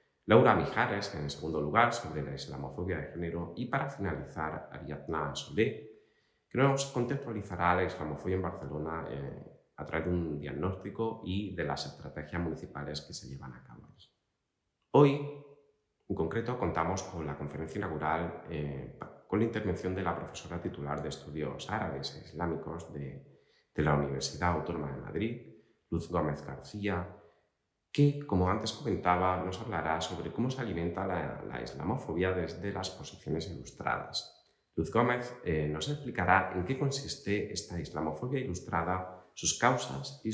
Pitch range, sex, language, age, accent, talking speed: 75-100 Hz, male, Spanish, 30-49, Spanish, 150 wpm